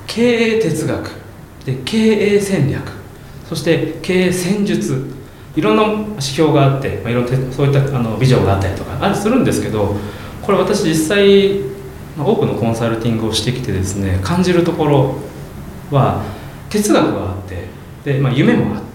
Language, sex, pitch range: Japanese, male, 110-180 Hz